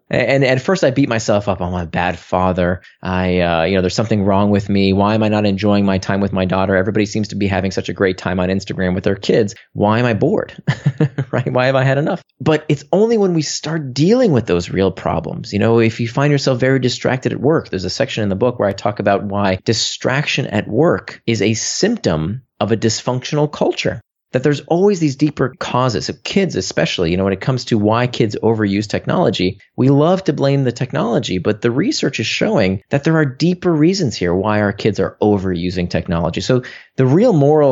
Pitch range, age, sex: 100-140 Hz, 30-49, male